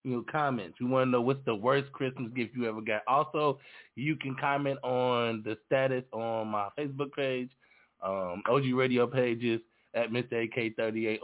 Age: 20-39